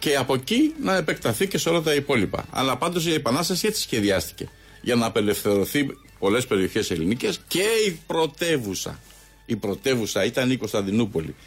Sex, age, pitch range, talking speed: male, 50-69, 110-170 Hz, 155 wpm